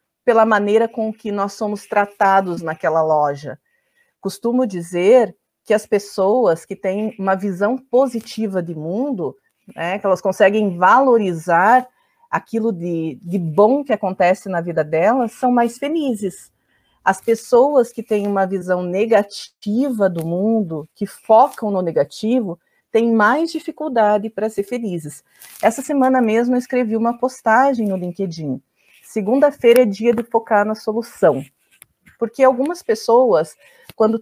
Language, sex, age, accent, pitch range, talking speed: Portuguese, female, 40-59, Brazilian, 195-255 Hz, 135 wpm